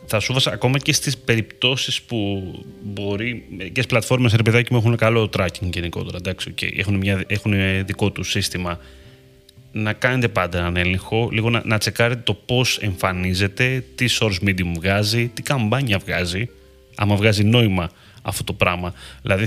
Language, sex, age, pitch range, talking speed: Greek, male, 30-49, 95-115 Hz, 150 wpm